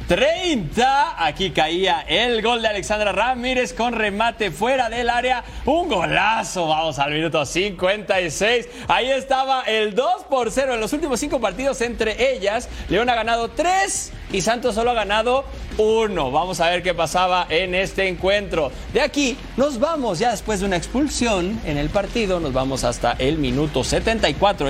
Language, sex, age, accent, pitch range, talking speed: Spanish, male, 30-49, Mexican, 190-280 Hz, 165 wpm